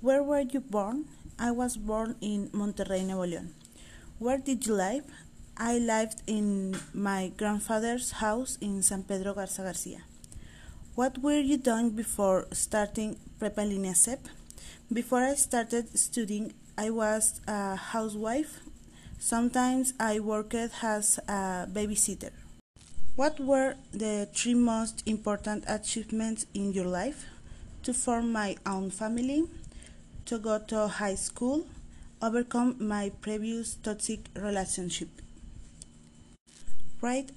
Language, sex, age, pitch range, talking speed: Spanish, female, 30-49, 200-235 Hz, 120 wpm